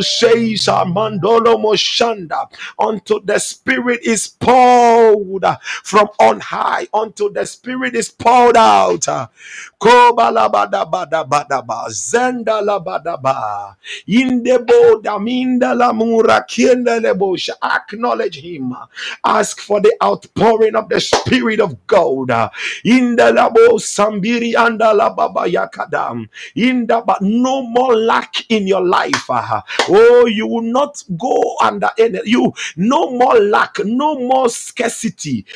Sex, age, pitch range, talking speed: male, 50-69, 205-255 Hz, 115 wpm